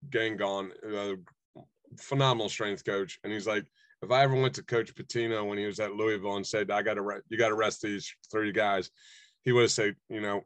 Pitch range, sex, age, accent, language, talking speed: 100-115 Hz, male, 30-49, American, English, 210 wpm